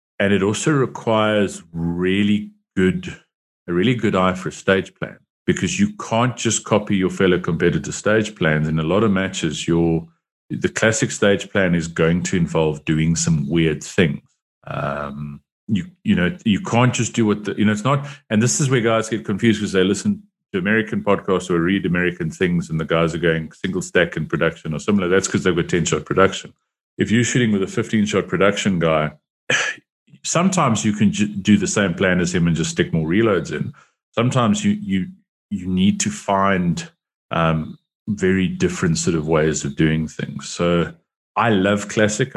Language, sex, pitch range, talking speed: English, male, 80-115 Hz, 190 wpm